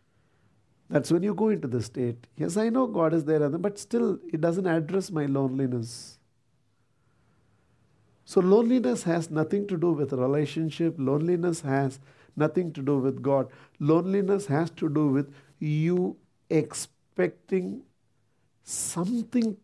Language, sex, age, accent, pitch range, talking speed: English, male, 50-69, Indian, 130-160 Hz, 130 wpm